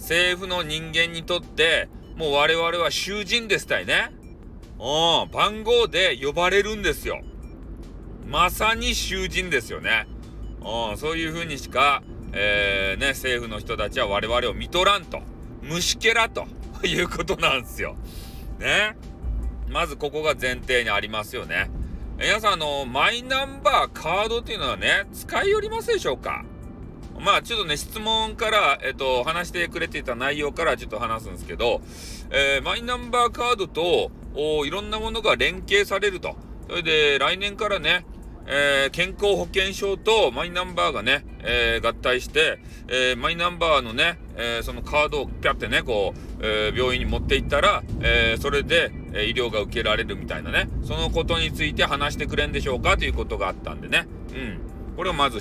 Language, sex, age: Japanese, male, 40-59